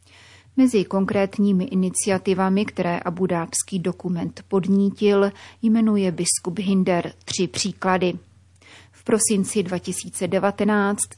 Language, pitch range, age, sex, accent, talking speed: Czech, 180-205 Hz, 30-49, female, native, 80 wpm